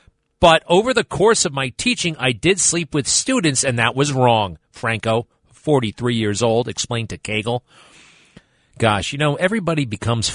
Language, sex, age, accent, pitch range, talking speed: English, male, 40-59, American, 110-150 Hz, 160 wpm